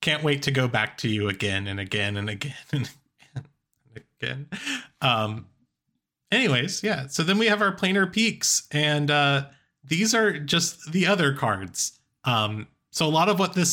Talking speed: 180 wpm